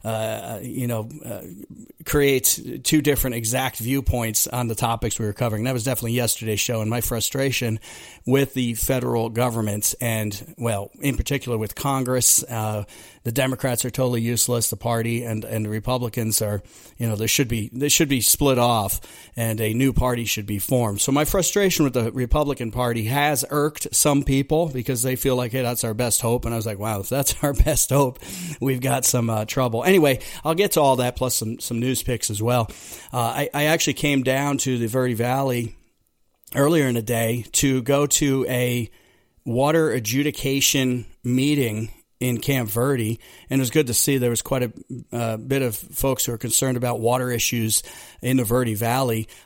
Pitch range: 115-135 Hz